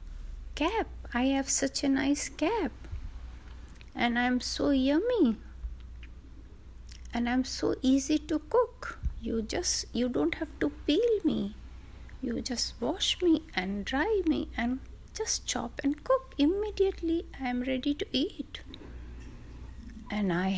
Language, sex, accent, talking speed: Hindi, female, native, 130 wpm